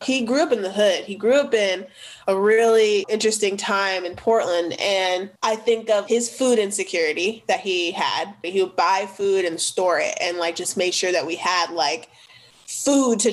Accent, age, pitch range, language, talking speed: American, 20-39, 180-225 Hz, English, 200 wpm